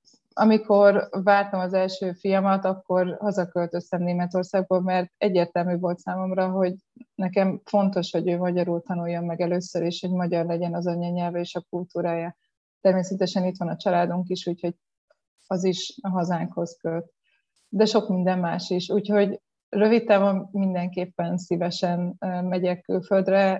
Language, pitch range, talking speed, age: Hungarian, 175-195 Hz, 135 wpm, 20-39